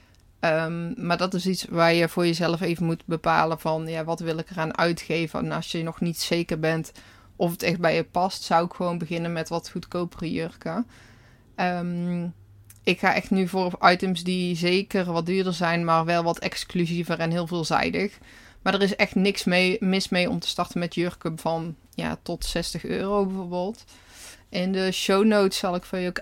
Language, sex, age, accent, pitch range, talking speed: Dutch, female, 20-39, Dutch, 165-190 Hz, 190 wpm